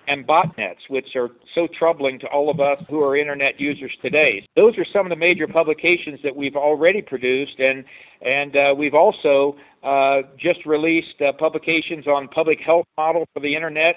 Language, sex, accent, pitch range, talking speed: English, male, American, 140-165 Hz, 185 wpm